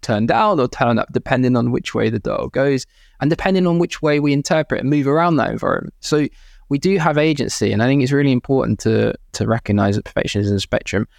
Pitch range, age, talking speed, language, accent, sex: 110-130 Hz, 20-39, 230 wpm, English, British, male